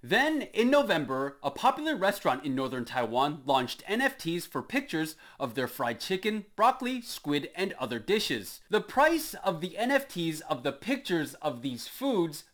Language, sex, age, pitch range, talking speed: English, male, 30-49, 145-235 Hz, 160 wpm